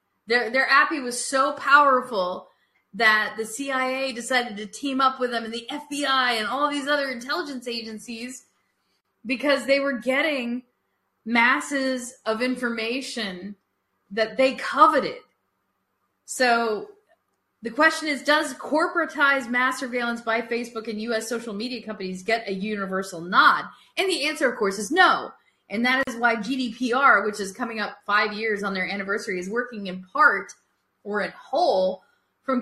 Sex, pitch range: female, 205-270 Hz